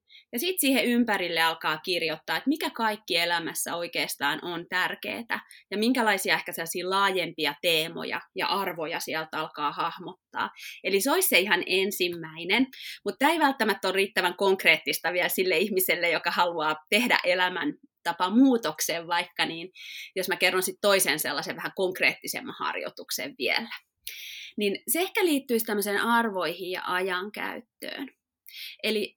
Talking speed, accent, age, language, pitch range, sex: 135 wpm, native, 20-39, Finnish, 170-235 Hz, female